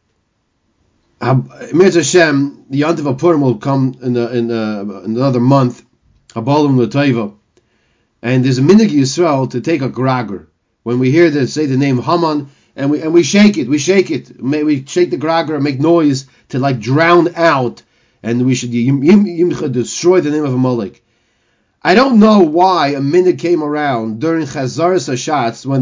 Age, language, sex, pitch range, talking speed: 30-49, English, male, 130-195 Hz, 165 wpm